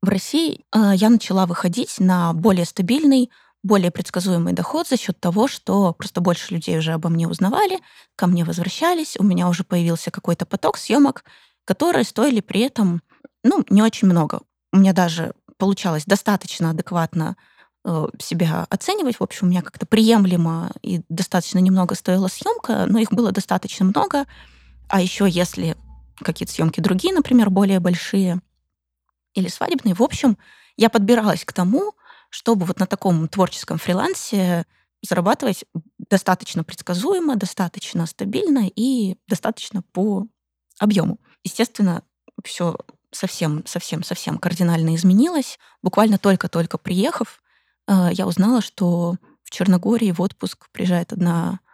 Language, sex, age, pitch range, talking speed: Russian, female, 20-39, 175-220 Hz, 135 wpm